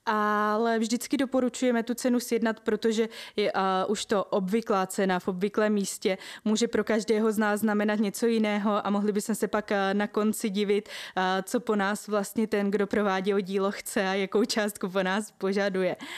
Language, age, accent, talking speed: Czech, 20-39, native, 185 wpm